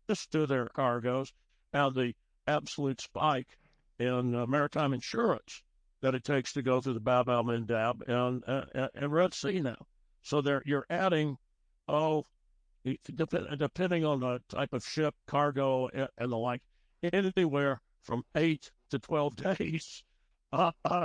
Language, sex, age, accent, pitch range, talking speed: English, male, 60-79, American, 120-145 Hz, 135 wpm